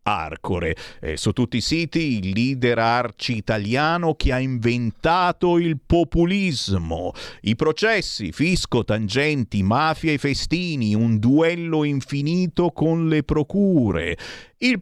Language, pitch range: Italian, 105-155 Hz